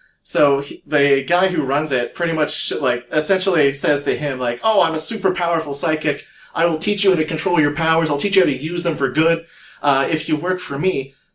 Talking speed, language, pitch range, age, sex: 235 wpm, English, 135-185 Hz, 30-49, male